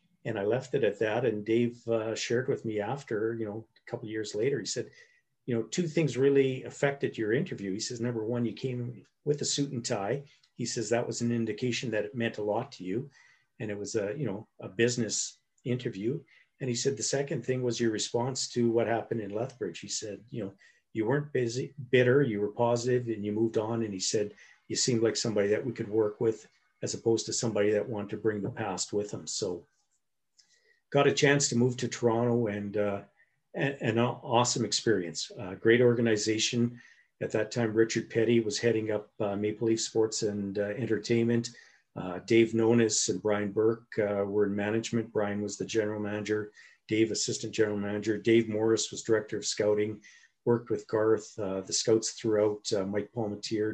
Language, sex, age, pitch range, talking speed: English, male, 50-69, 105-120 Hz, 205 wpm